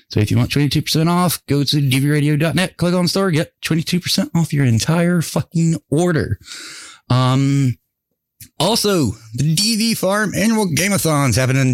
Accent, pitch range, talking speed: American, 110-160 Hz, 145 wpm